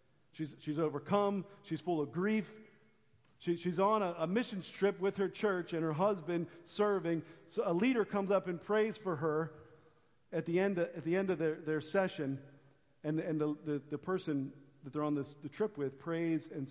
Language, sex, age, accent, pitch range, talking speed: English, male, 50-69, American, 140-160 Hz, 205 wpm